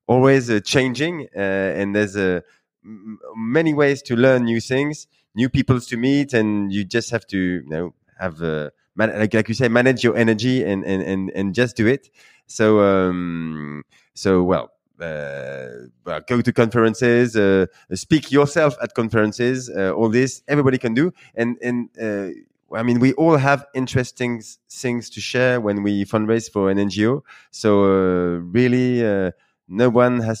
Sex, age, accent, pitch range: male, 20-39, French, 95-125 Hz